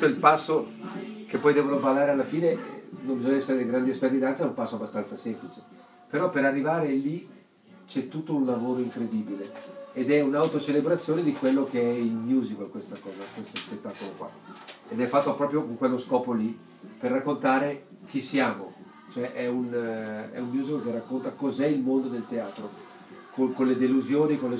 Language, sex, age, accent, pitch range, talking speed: Italian, male, 40-59, native, 125-145 Hz, 180 wpm